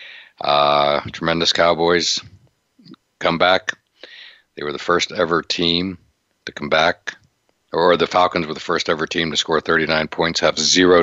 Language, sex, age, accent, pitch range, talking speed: English, male, 60-79, American, 75-90 Hz, 150 wpm